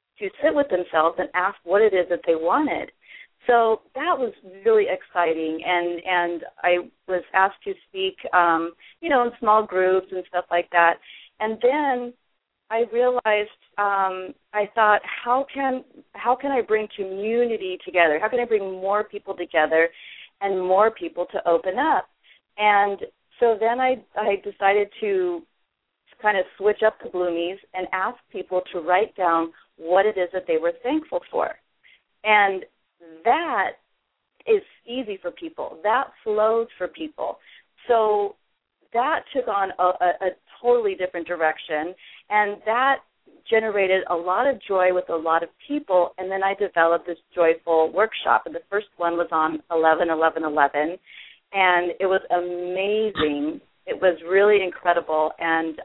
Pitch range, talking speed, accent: 175-225 Hz, 155 wpm, American